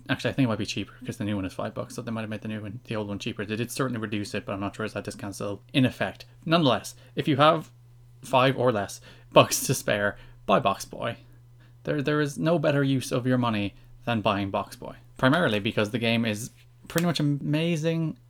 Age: 20-39